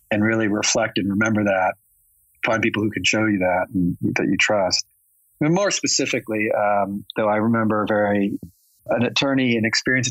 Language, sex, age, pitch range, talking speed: English, male, 40-59, 100-125 Hz, 170 wpm